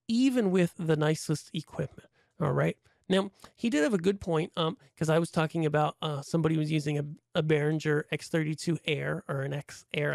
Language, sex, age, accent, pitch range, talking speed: English, male, 30-49, American, 150-185 Hz, 195 wpm